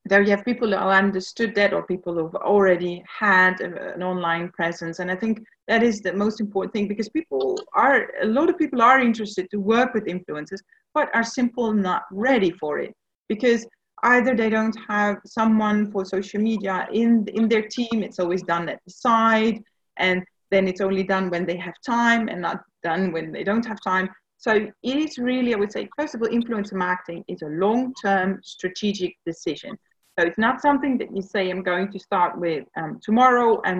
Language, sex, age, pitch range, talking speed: English, female, 30-49, 185-225 Hz, 200 wpm